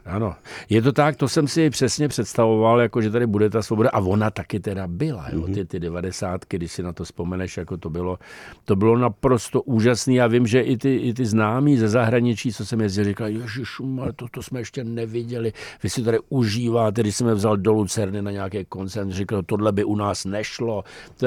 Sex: male